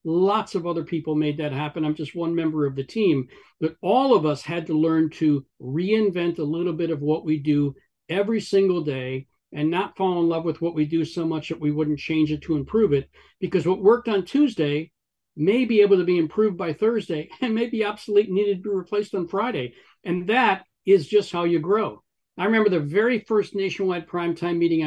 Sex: male